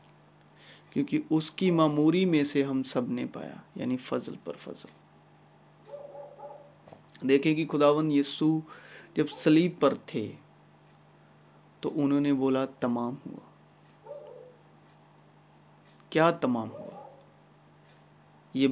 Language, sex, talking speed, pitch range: Urdu, male, 105 wpm, 115-150 Hz